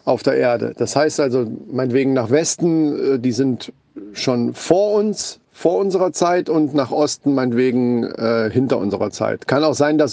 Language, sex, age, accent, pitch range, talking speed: German, male, 40-59, German, 140-195 Hz, 170 wpm